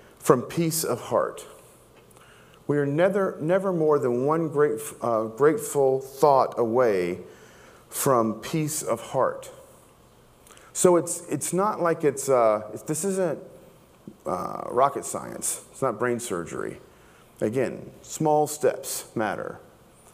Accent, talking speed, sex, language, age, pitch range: American, 120 wpm, male, English, 40-59, 120-180 Hz